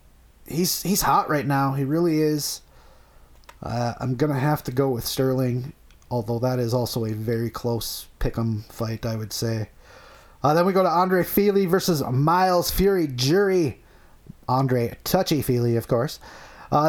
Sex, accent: male, American